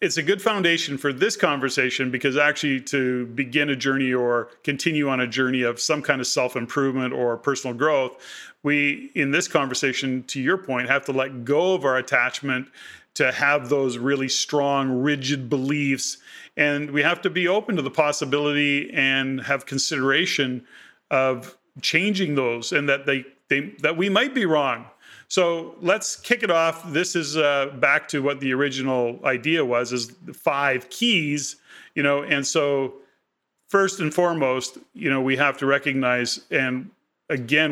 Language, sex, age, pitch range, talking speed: English, male, 40-59, 130-155 Hz, 165 wpm